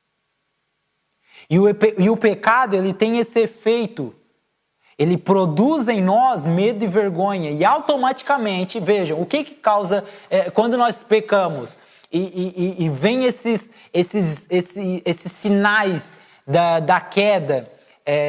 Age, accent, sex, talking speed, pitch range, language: 20-39, Brazilian, male, 130 wpm, 170-230 Hz, Portuguese